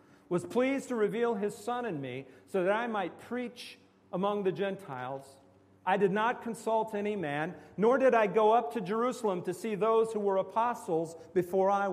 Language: English